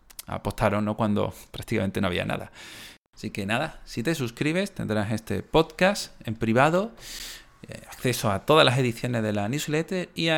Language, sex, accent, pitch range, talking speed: Spanish, male, Spanish, 105-130 Hz, 160 wpm